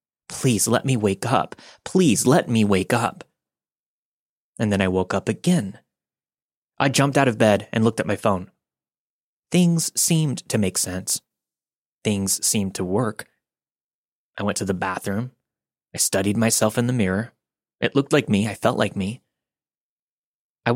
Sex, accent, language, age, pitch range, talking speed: male, American, English, 20-39, 100-135 Hz, 160 wpm